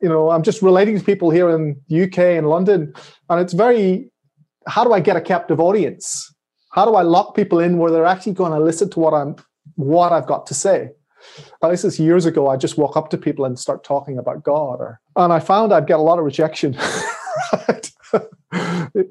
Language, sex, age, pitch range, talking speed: English, male, 30-49, 150-185 Hz, 225 wpm